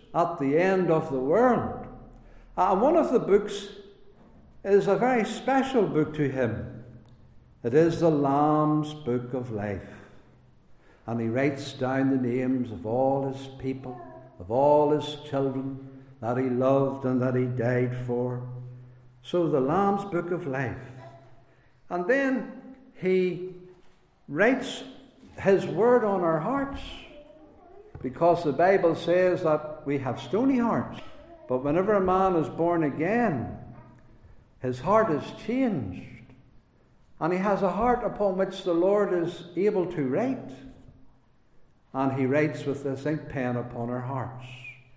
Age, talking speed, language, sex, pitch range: 60-79, 140 wpm, English, male, 125-195 Hz